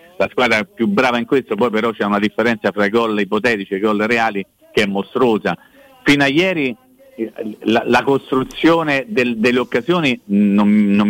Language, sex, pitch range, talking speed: Italian, male, 110-150 Hz, 180 wpm